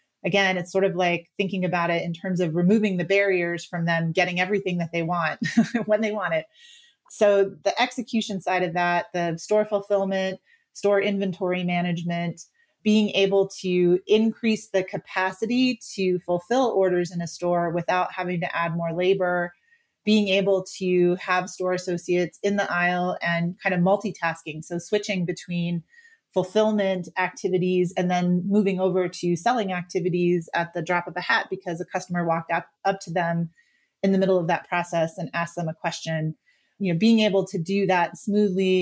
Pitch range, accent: 175-205 Hz, American